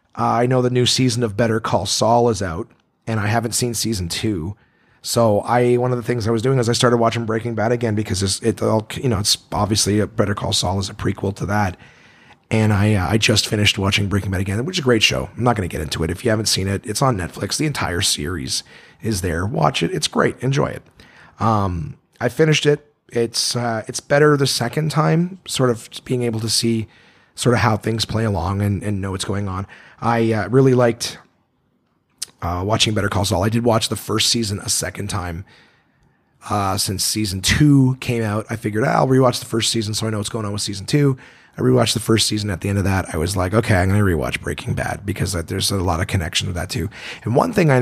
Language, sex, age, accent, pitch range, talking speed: English, male, 30-49, American, 100-125 Hz, 245 wpm